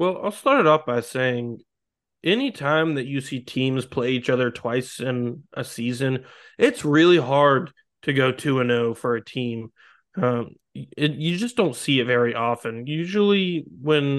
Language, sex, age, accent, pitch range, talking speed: English, male, 20-39, American, 125-155 Hz, 165 wpm